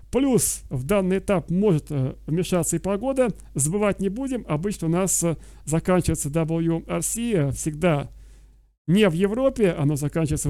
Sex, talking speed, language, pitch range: male, 125 wpm, Russian, 150-195 Hz